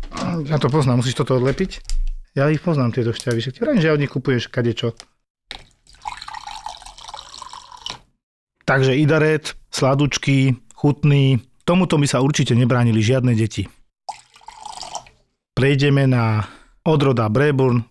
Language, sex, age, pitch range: Slovak, male, 40-59, 115-145 Hz